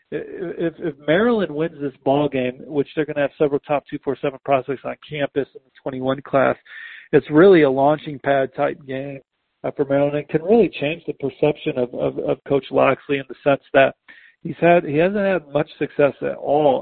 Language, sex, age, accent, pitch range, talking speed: English, male, 50-69, American, 130-150 Hz, 195 wpm